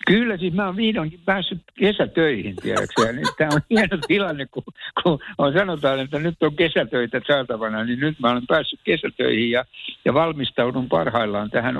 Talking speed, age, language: 160 wpm, 60-79, Finnish